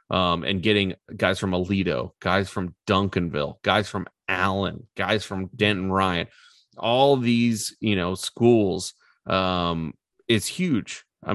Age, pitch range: 20-39, 90-105 Hz